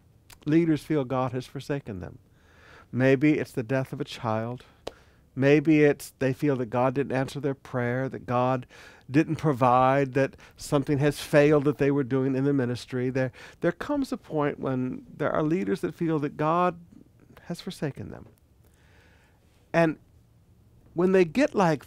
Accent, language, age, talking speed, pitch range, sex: American, English, 50-69, 160 wpm, 120-165 Hz, male